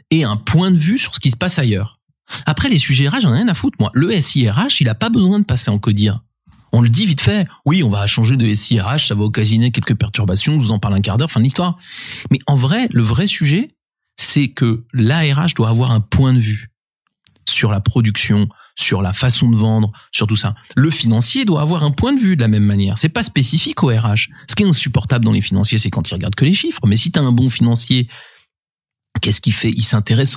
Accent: French